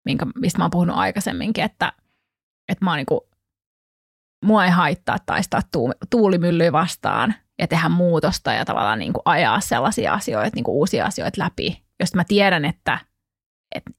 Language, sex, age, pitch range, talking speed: Finnish, female, 20-39, 165-210 Hz, 145 wpm